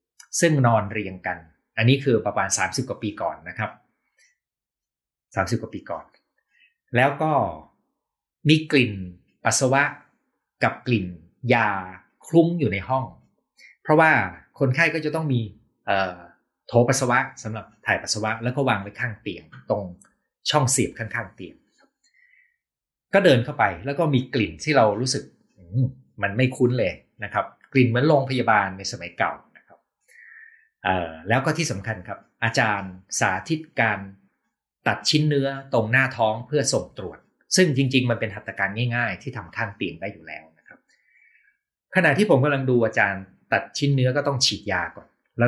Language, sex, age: Thai, male, 20-39